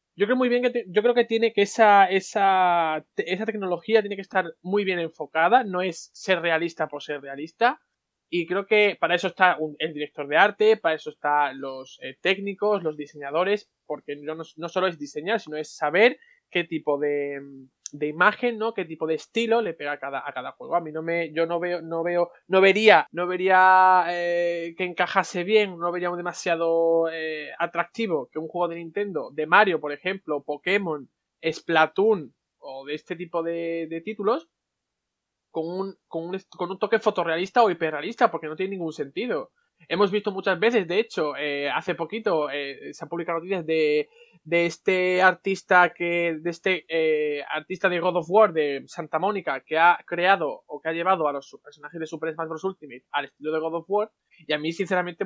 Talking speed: 200 wpm